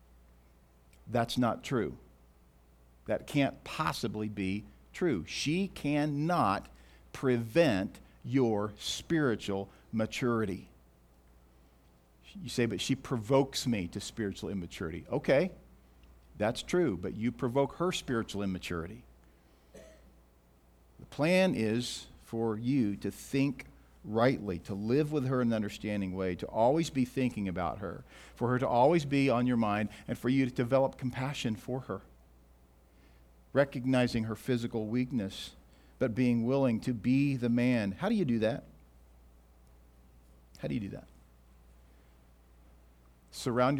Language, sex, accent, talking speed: English, male, American, 125 wpm